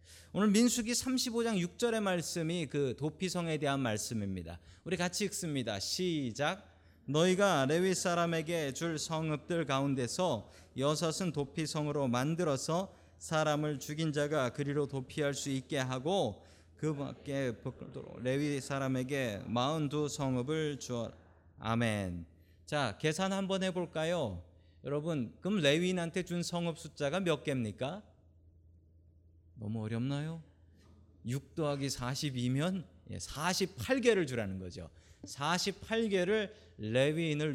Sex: male